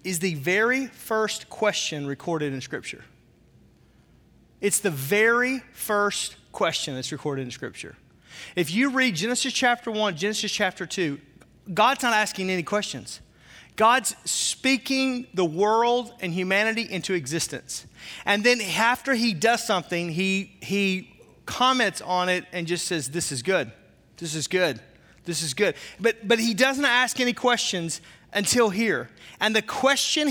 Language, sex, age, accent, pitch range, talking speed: English, male, 30-49, American, 180-235 Hz, 145 wpm